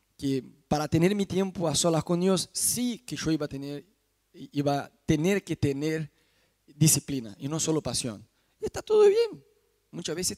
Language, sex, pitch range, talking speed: Spanish, male, 150-200 Hz, 175 wpm